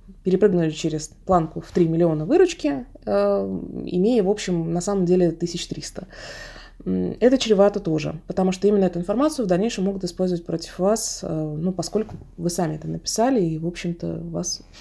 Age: 20-39